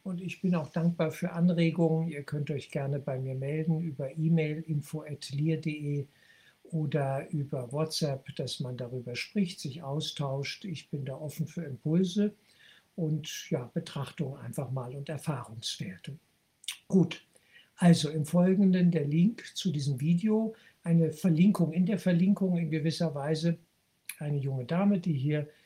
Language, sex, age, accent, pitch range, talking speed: German, male, 60-79, German, 145-175 Hz, 140 wpm